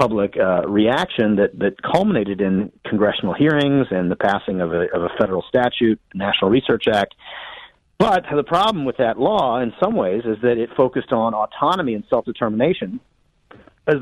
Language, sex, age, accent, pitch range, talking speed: English, male, 40-59, American, 105-130 Hz, 170 wpm